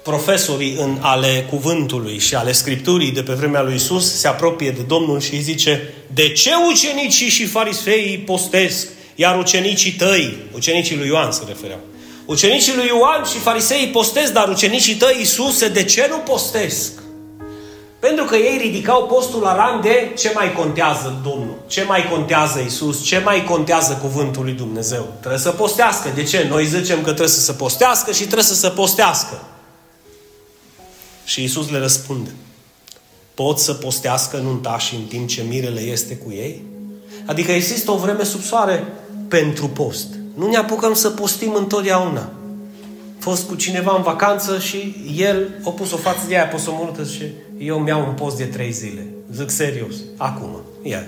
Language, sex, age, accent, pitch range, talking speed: Romanian, male, 30-49, native, 130-205 Hz, 165 wpm